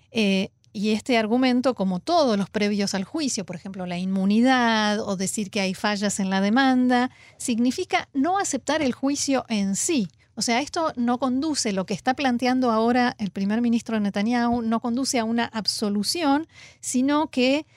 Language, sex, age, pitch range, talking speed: Spanish, female, 40-59, 200-260 Hz, 170 wpm